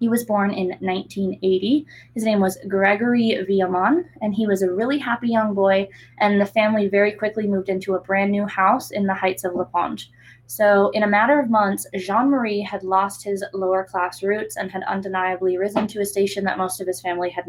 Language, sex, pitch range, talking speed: English, female, 185-220 Hz, 210 wpm